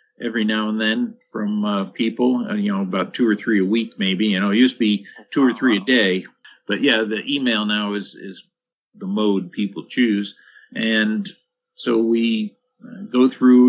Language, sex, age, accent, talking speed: English, male, 50-69, American, 195 wpm